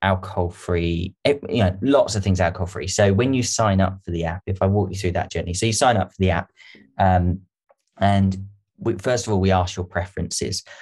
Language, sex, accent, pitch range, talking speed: English, male, British, 90-105 Hz, 210 wpm